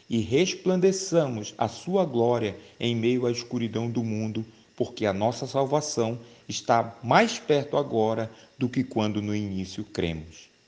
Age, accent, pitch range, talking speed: 40-59, Brazilian, 105-120 Hz, 140 wpm